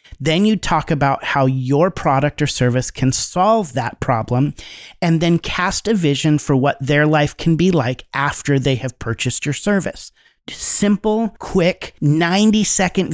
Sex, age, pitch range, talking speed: male, 40-59, 130-175 Hz, 155 wpm